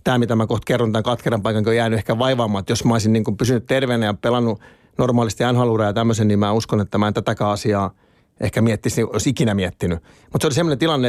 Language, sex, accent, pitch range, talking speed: Finnish, male, native, 105-130 Hz, 240 wpm